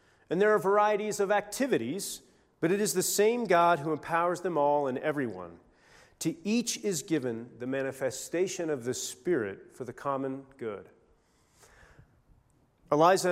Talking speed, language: 145 wpm, English